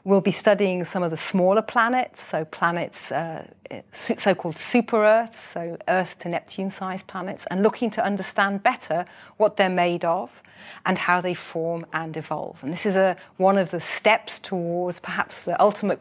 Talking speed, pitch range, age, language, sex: 155 wpm, 170-200 Hz, 40-59, English, female